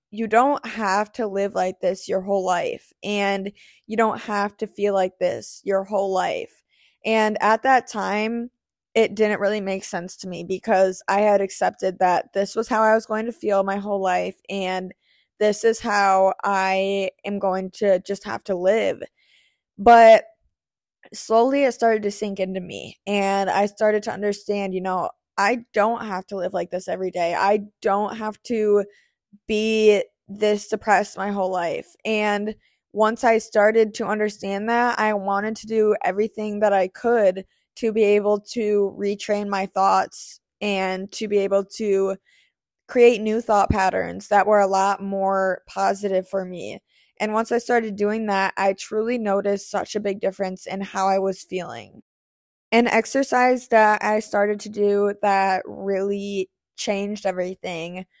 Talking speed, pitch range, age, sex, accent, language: 165 wpm, 195-215 Hz, 20-39, female, American, English